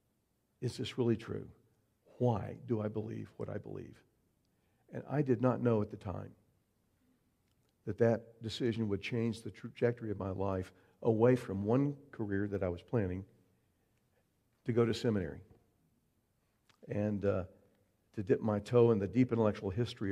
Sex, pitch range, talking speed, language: male, 105-120 Hz, 155 wpm, English